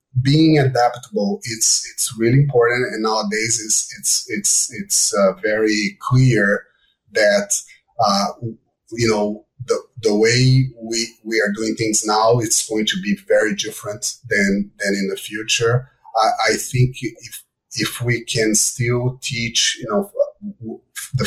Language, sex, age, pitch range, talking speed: English, male, 30-49, 110-135 Hz, 145 wpm